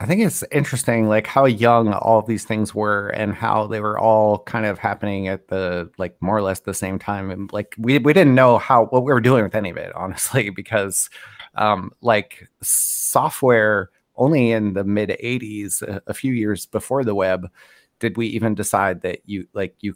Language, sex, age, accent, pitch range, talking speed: English, male, 30-49, American, 100-120 Hz, 205 wpm